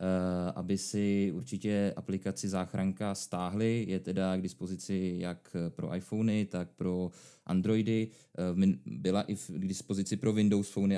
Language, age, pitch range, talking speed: Czech, 20-39, 95-100 Hz, 125 wpm